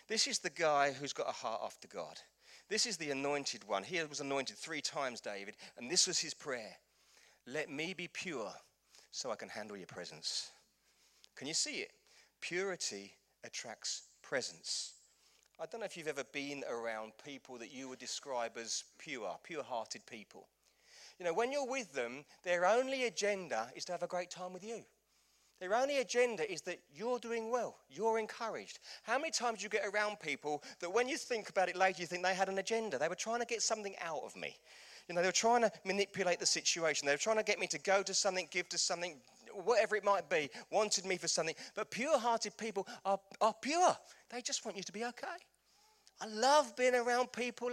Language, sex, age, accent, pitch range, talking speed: English, male, 40-59, British, 160-235 Hz, 210 wpm